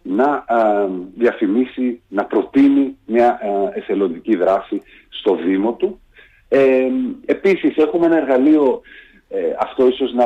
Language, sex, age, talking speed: Greek, male, 40-59, 125 wpm